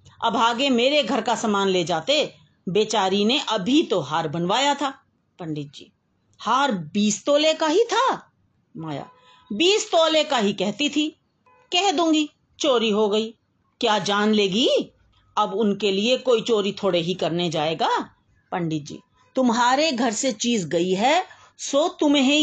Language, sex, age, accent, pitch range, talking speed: Hindi, female, 40-59, native, 185-275 Hz, 155 wpm